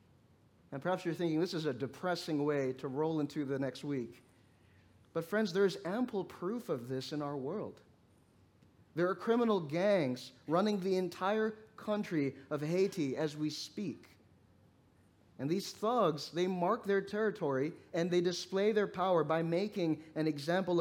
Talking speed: 160 wpm